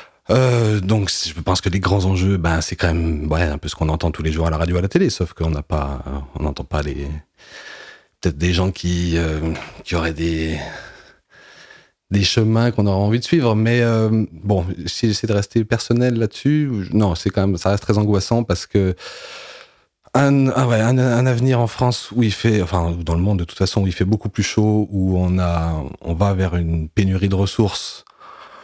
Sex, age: male, 30-49